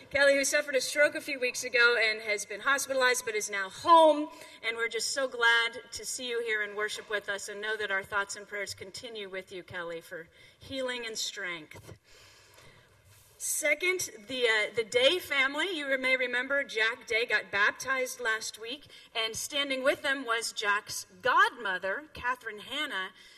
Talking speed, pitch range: 175 wpm, 200-270 Hz